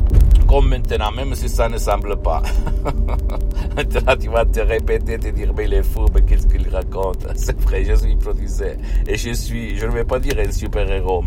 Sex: male